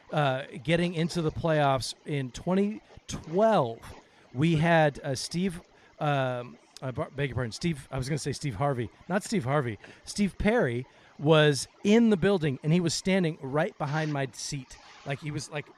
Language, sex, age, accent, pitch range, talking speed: English, male, 40-59, American, 135-175 Hz, 170 wpm